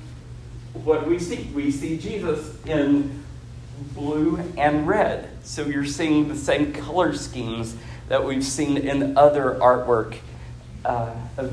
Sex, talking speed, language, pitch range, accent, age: male, 130 wpm, English, 115-150 Hz, American, 40-59